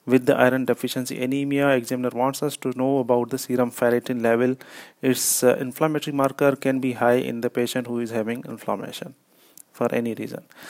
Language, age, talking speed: English, 30-49, 180 wpm